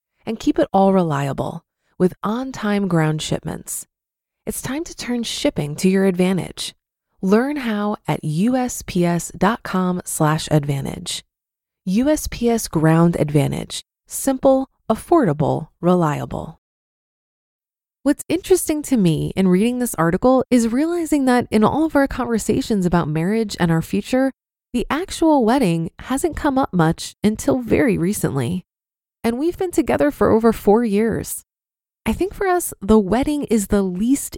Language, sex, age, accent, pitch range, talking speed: English, female, 20-39, American, 185-260 Hz, 135 wpm